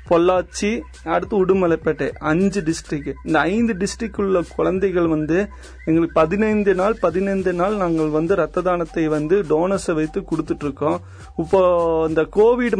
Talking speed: 130 wpm